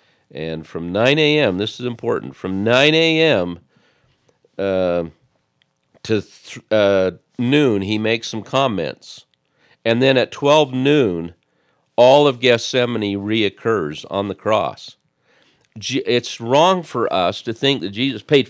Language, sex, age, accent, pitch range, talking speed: English, male, 50-69, American, 90-125 Hz, 125 wpm